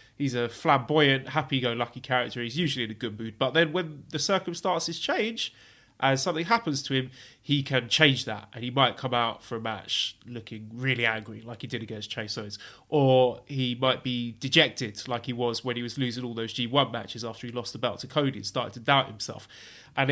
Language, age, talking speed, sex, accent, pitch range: English, 20-39, 215 wpm, male, British, 120-160 Hz